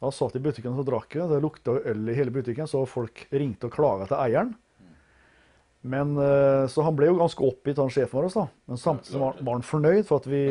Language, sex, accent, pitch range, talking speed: English, male, Swedish, 130-160 Hz, 225 wpm